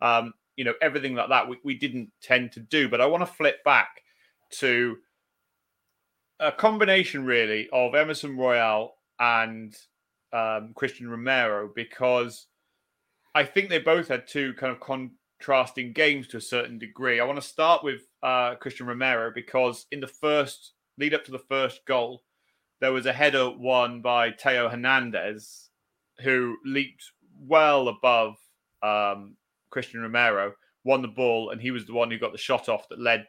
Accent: British